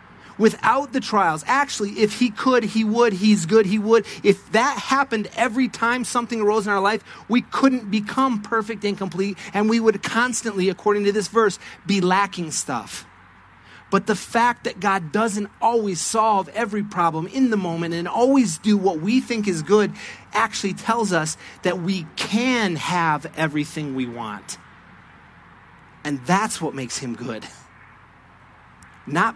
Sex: male